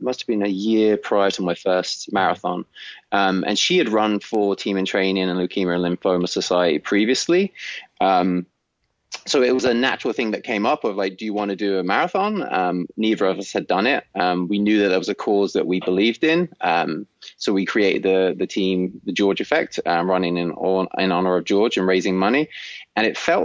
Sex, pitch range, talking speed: male, 90-105 Hz, 220 wpm